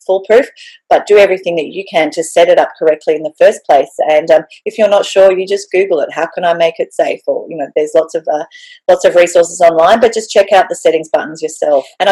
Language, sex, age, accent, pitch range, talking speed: English, female, 40-59, Australian, 155-205 Hz, 255 wpm